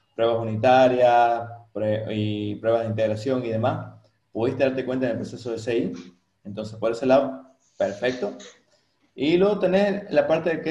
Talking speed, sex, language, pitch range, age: 155 wpm, male, Spanish, 115-150 Hz, 30-49